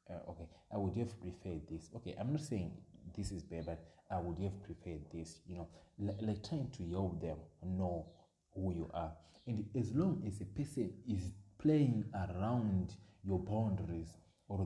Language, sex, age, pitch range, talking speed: English, male, 30-49, 90-110 Hz, 180 wpm